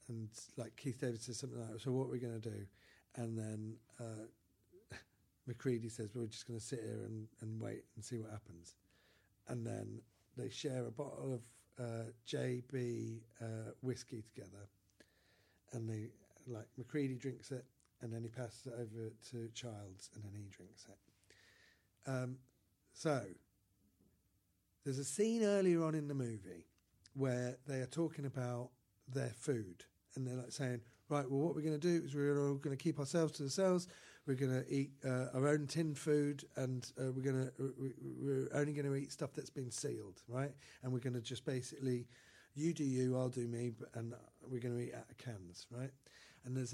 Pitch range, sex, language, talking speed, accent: 115-140 Hz, male, English, 195 wpm, British